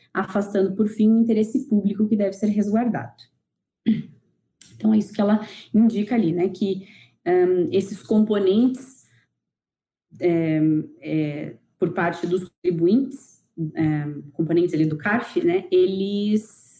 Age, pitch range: 20-39, 170-215 Hz